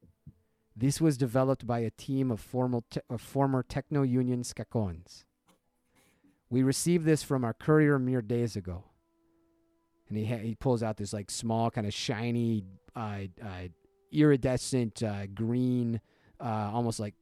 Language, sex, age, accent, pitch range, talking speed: English, male, 30-49, American, 105-135 Hz, 150 wpm